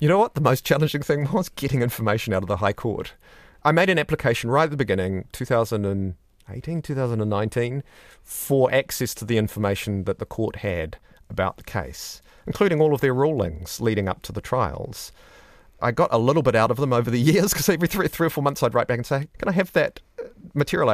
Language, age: English, 30-49